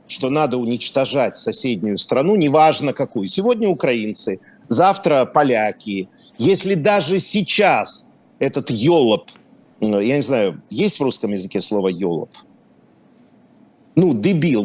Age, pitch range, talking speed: 50-69, 125-195 Hz, 110 wpm